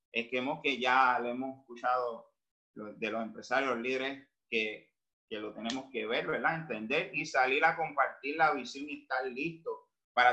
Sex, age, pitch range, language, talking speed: male, 30-49, 135-190 Hz, Spanish, 175 wpm